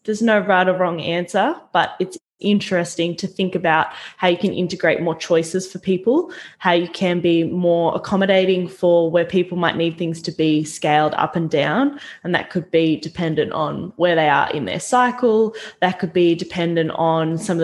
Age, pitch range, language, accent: 20-39, 165-185 Hz, English, Australian